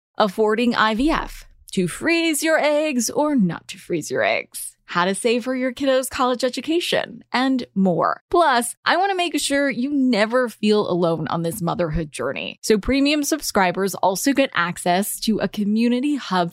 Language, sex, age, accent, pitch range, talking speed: English, female, 20-39, American, 195-295 Hz, 165 wpm